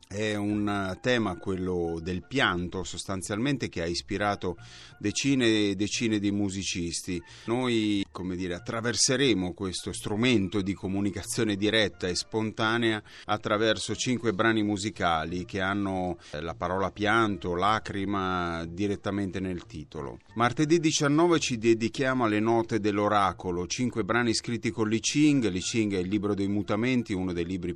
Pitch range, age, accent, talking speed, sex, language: 95-120 Hz, 30-49, native, 135 wpm, male, Italian